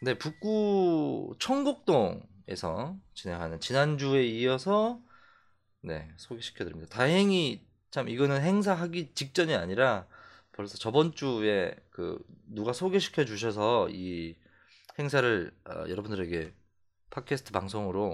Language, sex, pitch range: Korean, male, 95-155 Hz